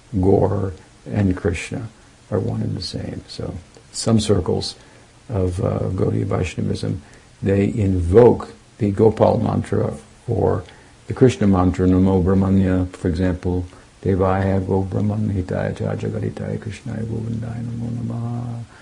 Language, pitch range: English, 95-115 Hz